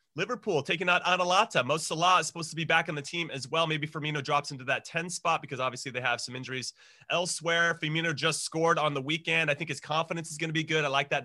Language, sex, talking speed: English, male, 255 wpm